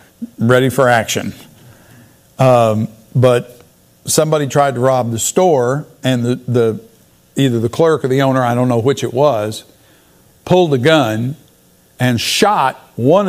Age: 50-69